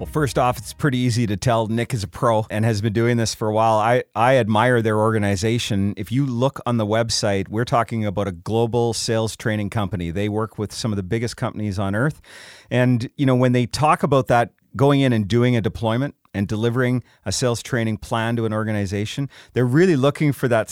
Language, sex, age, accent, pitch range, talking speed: English, male, 40-59, American, 110-140 Hz, 225 wpm